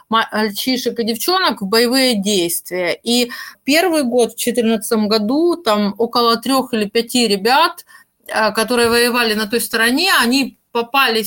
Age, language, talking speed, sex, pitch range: 20-39, Russian, 135 wpm, female, 220-275 Hz